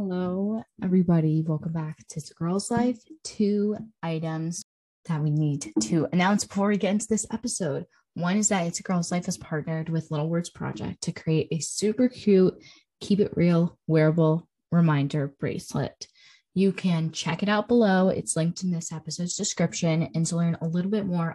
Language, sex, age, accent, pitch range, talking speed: English, female, 10-29, American, 160-200 Hz, 185 wpm